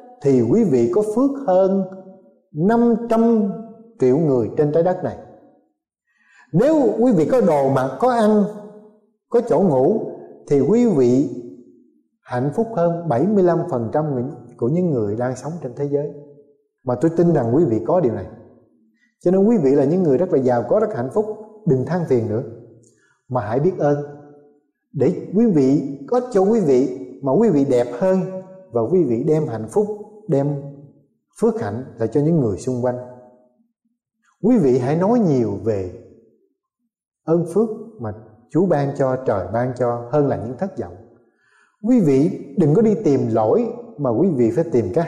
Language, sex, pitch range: Vietnamese, male, 130-210 Hz